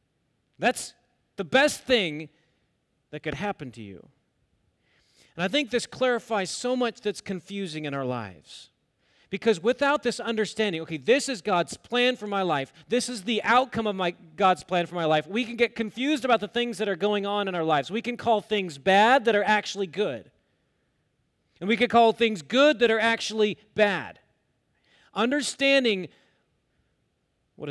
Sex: male